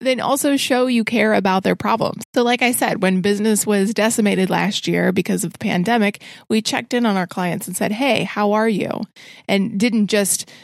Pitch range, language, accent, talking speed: 180-215 Hz, English, American, 210 wpm